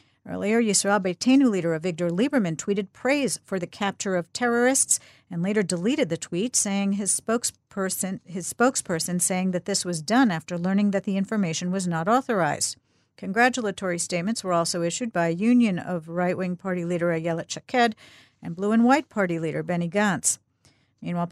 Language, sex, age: English, female, 50-69